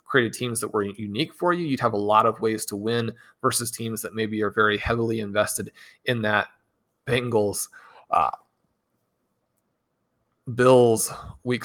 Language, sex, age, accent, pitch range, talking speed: English, male, 30-49, American, 105-125 Hz, 150 wpm